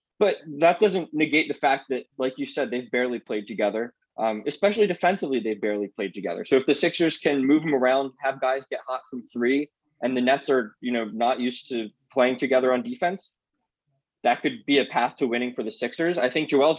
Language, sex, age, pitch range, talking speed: English, male, 20-39, 120-140 Hz, 220 wpm